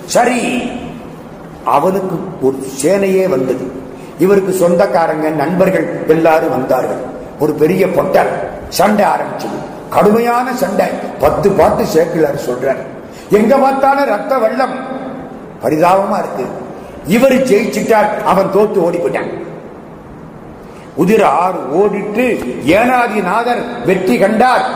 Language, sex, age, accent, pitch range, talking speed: Tamil, male, 50-69, native, 165-235 Hz, 85 wpm